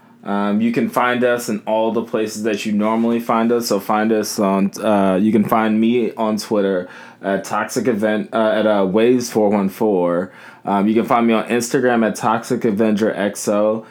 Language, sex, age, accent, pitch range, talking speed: English, male, 20-39, American, 100-120 Hz, 175 wpm